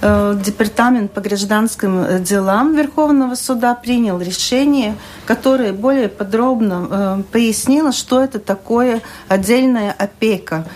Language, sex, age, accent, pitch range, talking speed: Russian, female, 40-59, native, 195-240 Hz, 100 wpm